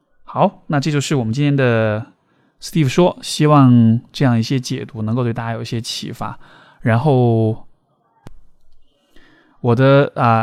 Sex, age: male, 20-39